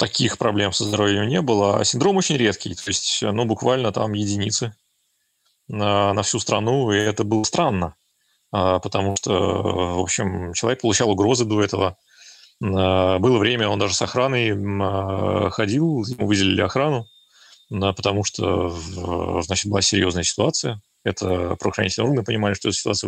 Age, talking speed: 30-49, 145 wpm